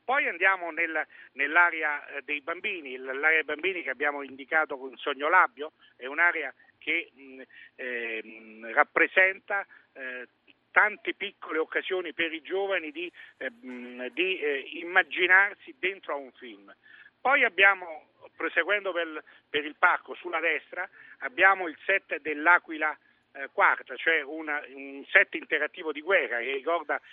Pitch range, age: 140-195 Hz, 50-69